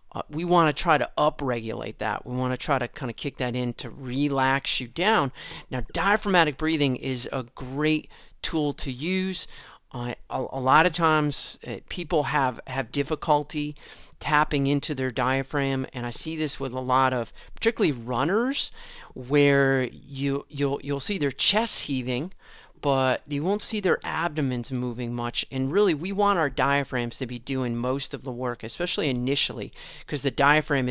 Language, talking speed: English, 175 wpm